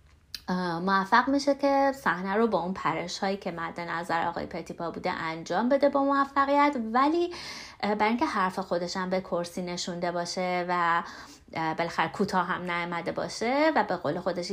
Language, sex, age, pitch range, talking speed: Persian, female, 30-49, 175-250 Hz, 160 wpm